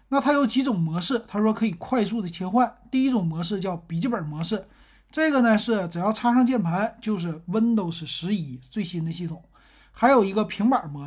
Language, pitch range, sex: Chinese, 165-225 Hz, male